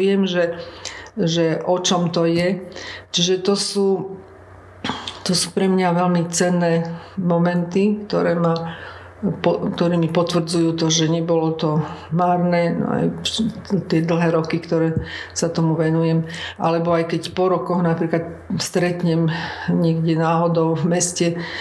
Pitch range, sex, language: 165-180 Hz, female, Slovak